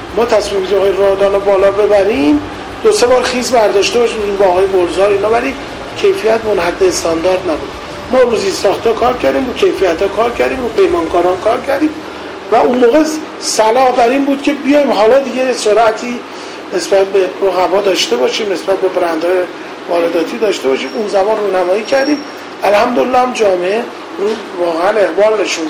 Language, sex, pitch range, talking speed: Persian, male, 185-275 Hz, 165 wpm